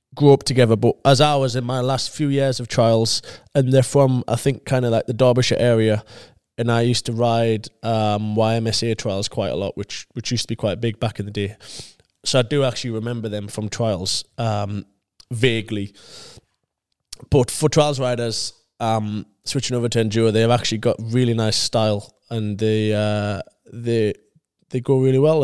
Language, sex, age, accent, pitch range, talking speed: English, male, 20-39, British, 110-130 Hz, 190 wpm